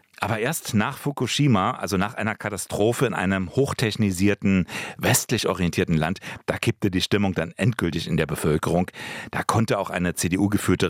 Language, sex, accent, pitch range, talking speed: German, male, German, 90-120 Hz, 155 wpm